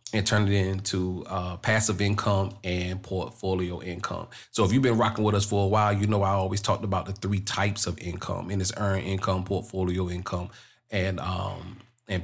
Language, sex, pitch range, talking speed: English, male, 95-110 Hz, 195 wpm